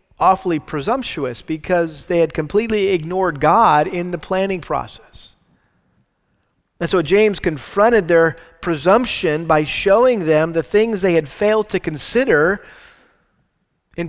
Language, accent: English, American